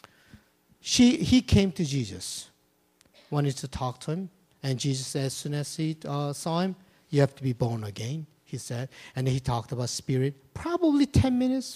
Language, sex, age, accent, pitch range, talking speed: English, male, 50-69, Japanese, 120-170 Hz, 180 wpm